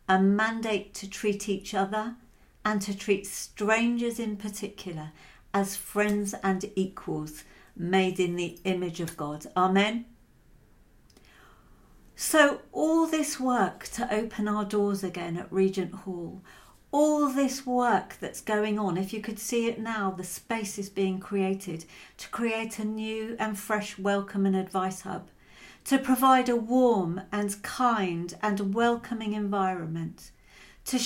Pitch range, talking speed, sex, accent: 190-225 Hz, 140 wpm, female, British